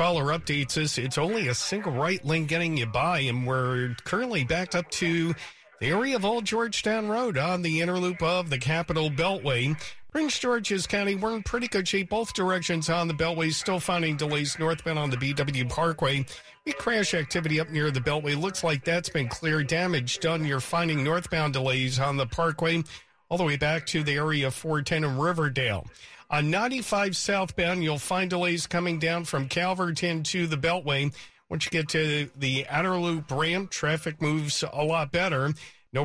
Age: 50-69